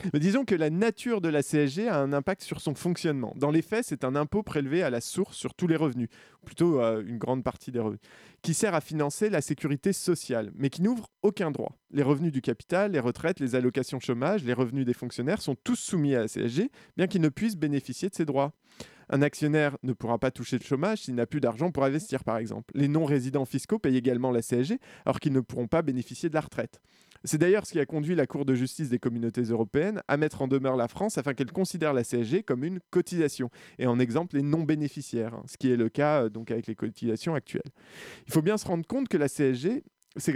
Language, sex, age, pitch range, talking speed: French, male, 20-39, 125-170 Hz, 235 wpm